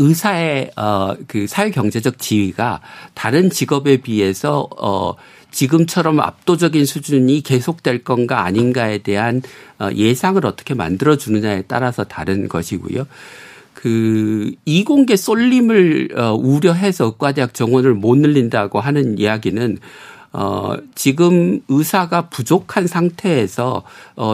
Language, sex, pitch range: Korean, male, 110-170 Hz